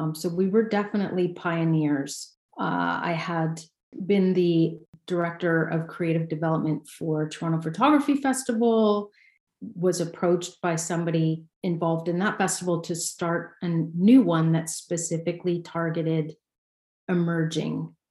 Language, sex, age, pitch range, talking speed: English, female, 40-59, 160-185 Hz, 120 wpm